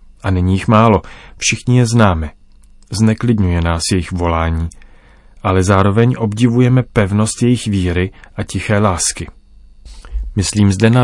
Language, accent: Czech, native